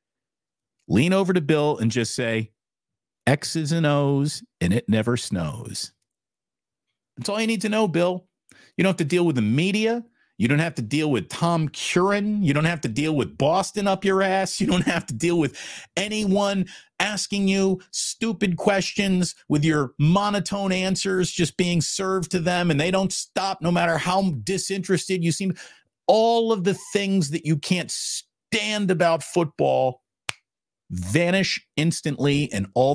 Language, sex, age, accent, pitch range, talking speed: English, male, 50-69, American, 135-190 Hz, 165 wpm